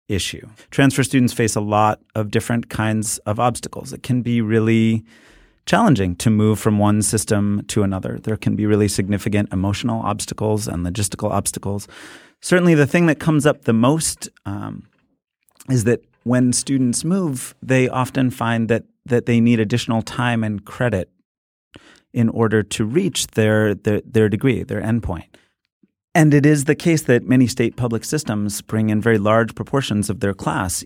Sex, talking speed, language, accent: male, 165 wpm, English, American